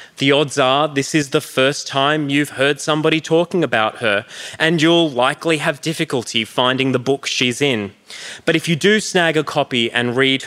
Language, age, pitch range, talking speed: English, 20-39, 135-165 Hz, 190 wpm